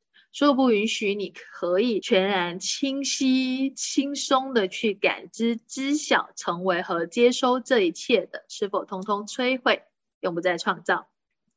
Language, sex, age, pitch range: Chinese, female, 20-39, 195-275 Hz